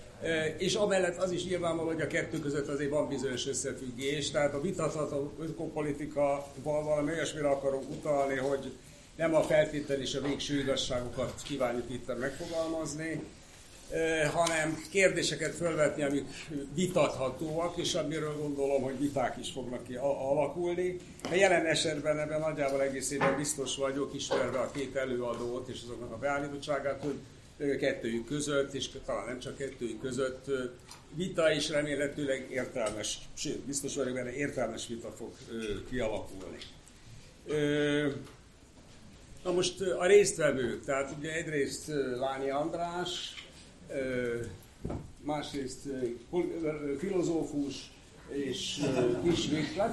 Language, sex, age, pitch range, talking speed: Hungarian, male, 60-79, 135-155 Hz, 115 wpm